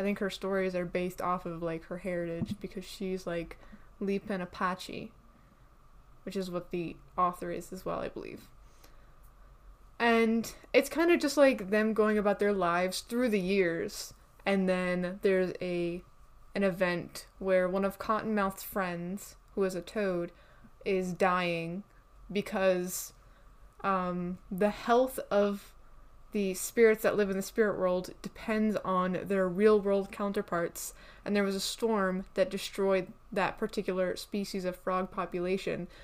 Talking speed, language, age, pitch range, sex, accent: 150 wpm, English, 20-39, 180-205 Hz, female, American